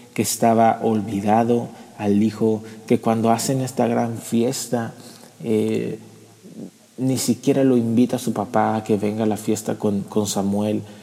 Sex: male